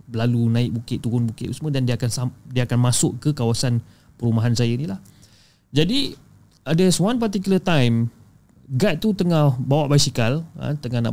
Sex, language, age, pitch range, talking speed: male, Malay, 30-49, 115-150 Hz, 155 wpm